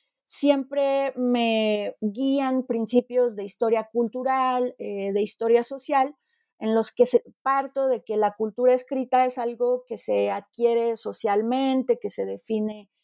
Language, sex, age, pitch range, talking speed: Spanish, female, 30-49, 225-275 Hz, 135 wpm